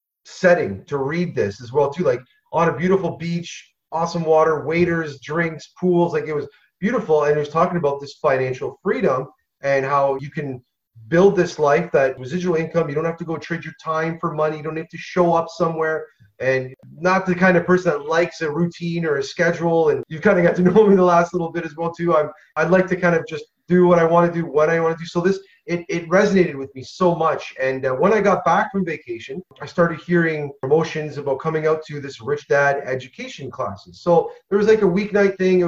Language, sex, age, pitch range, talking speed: English, male, 30-49, 145-175 Hz, 235 wpm